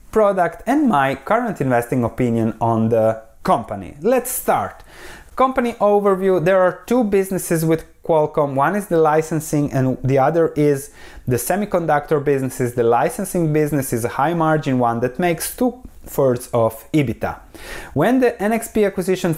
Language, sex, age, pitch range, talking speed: English, male, 30-49, 120-180 Hz, 145 wpm